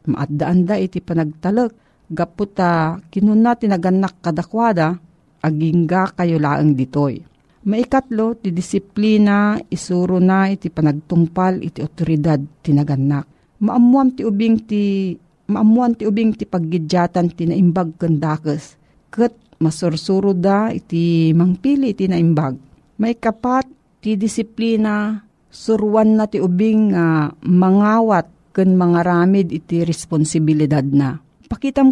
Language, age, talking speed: Filipino, 50-69, 100 wpm